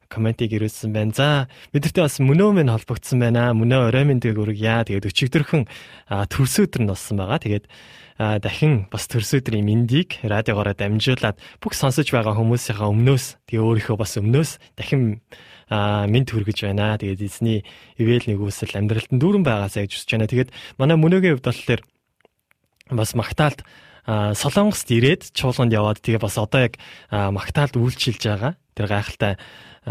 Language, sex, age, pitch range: Korean, male, 20-39, 105-130 Hz